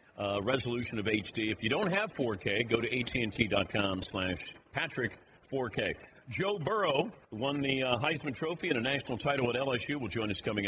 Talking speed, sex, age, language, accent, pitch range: 175 wpm, male, 50-69, English, American, 110-145 Hz